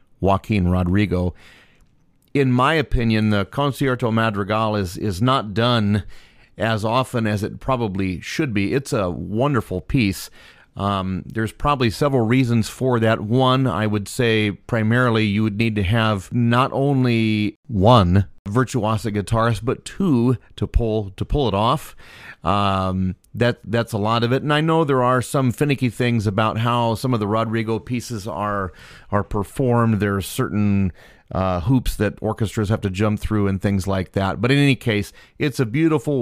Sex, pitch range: male, 100-125 Hz